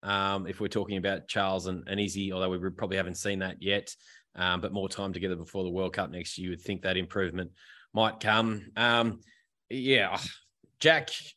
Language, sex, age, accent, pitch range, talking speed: English, male, 20-39, Australian, 95-110 Hz, 190 wpm